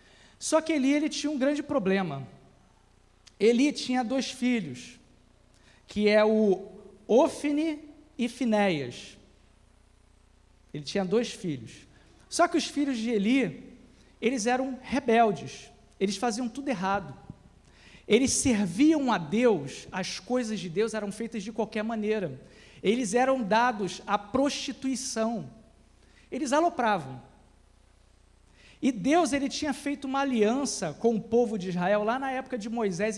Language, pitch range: Portuguese, 175-245 Hz